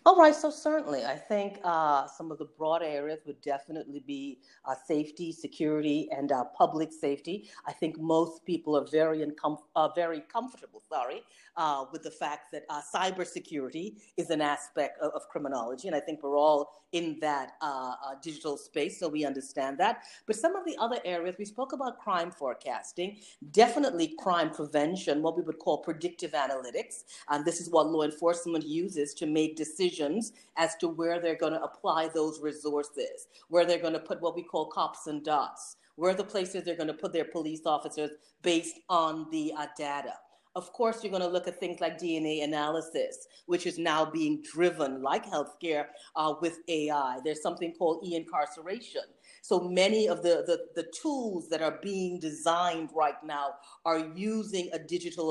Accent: American